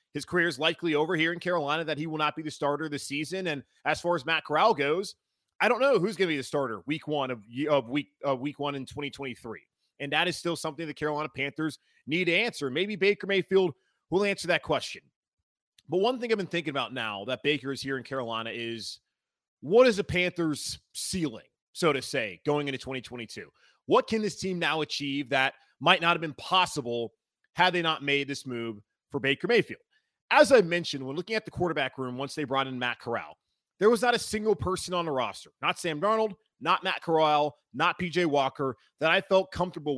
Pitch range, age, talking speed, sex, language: 135-180 Hz, 30-49, 215 wpm, male, English